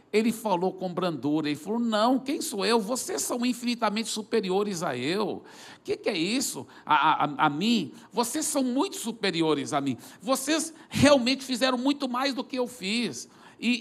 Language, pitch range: Portuguese, 170-240 Hz